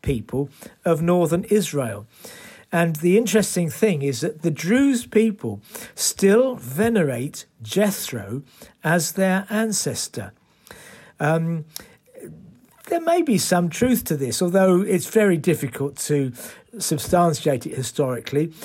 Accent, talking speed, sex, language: British, 115 wpm, male, English